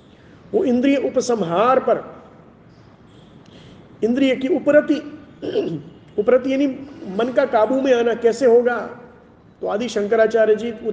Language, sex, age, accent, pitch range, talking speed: Hindi, male, 40-59, native, 220-275 Hz, 115 wpm